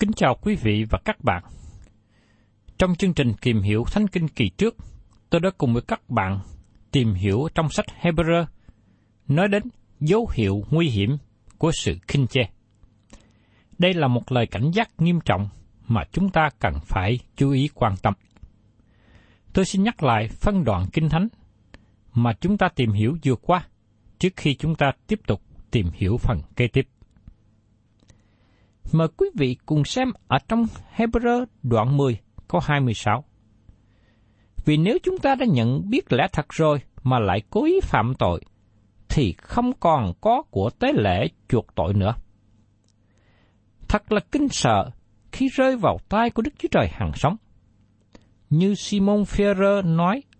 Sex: male